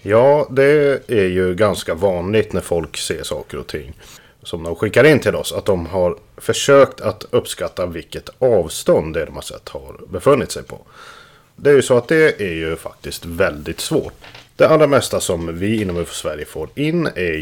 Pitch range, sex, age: 90-135 Hz, male, 30-49